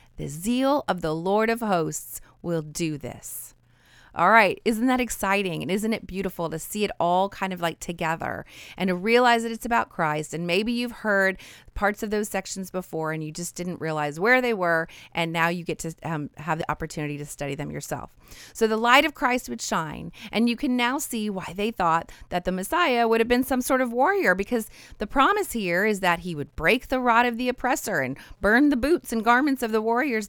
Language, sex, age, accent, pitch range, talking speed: English, female, 30-49, American, 165-235 Hz, 220 wpm